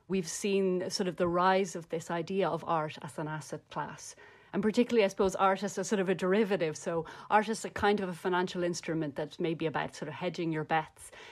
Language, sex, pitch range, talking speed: English, female, 155-190 Hz, 220 wpm